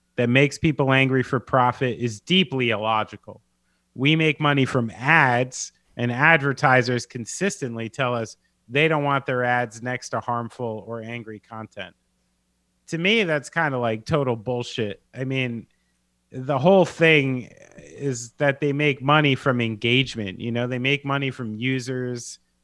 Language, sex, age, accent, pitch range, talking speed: English, male, 30-49, American, 115-145 Hz, 150 wpm